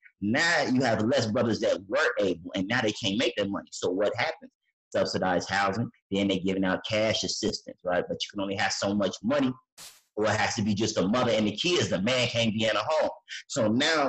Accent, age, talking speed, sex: American, 30-49, 235 wpm, male